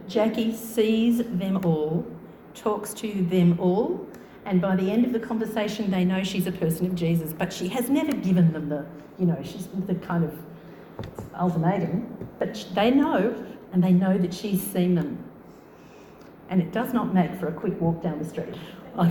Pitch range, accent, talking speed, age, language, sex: 175-220 Hz, Australian, 185 wpm, 50-69, English, female